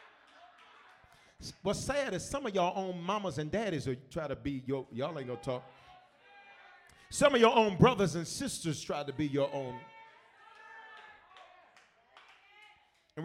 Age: 40-59